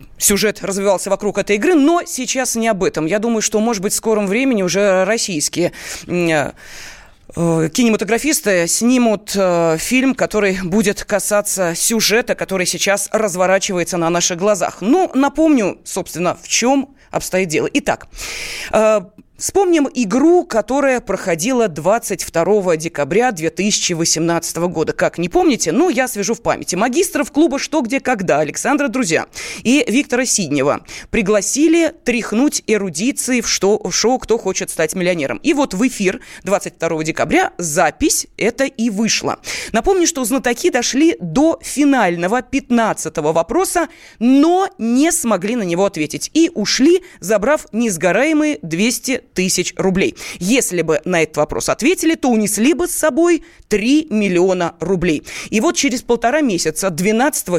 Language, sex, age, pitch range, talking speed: Russian, female, 20-39, 185-270 Hz, 135 wpm